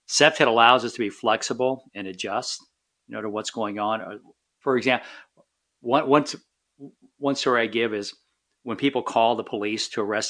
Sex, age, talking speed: male, 50-69, 175 wpm